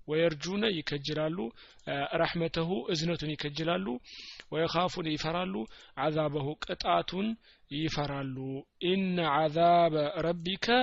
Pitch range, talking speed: 155-190 Hz, 70 wpm